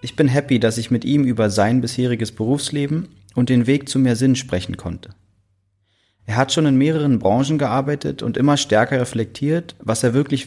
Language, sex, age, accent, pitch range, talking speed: German, male, 30-49, German, 110-140 Hz, 190 wpm